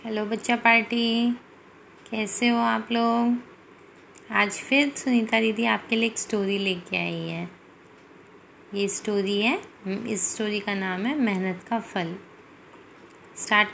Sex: female